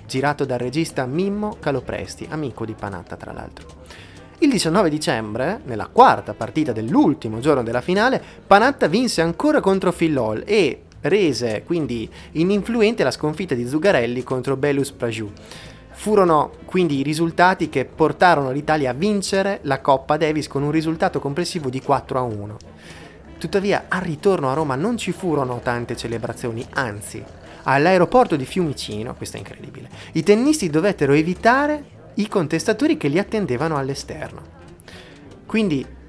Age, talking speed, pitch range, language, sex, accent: 30-49, 140 wpm, 120-165 Hz, Italian, male, native